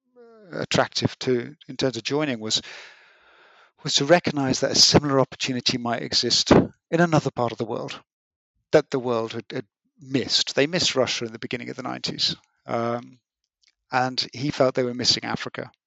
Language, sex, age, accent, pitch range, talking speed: English, male, 50-69, British, 120-140 Hz, 170 wpm